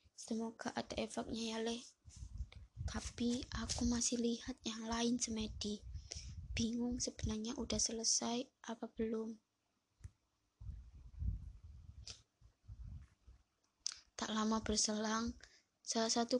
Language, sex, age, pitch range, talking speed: Indonesian, female, 20-39, 210-230 Hz, 85 wpm